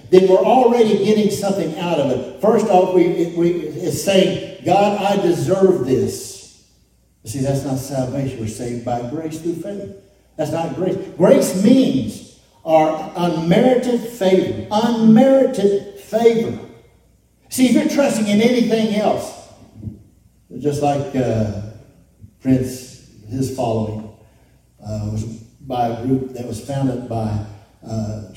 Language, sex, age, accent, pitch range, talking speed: English, male, 60-79, American, 135-195 Hz, 125 wpm